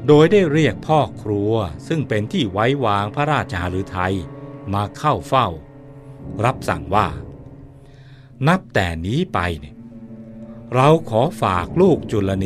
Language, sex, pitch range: Thai, male, 100-135 Hz